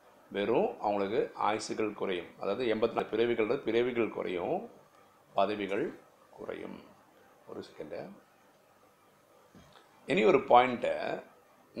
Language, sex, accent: Tamil, male, native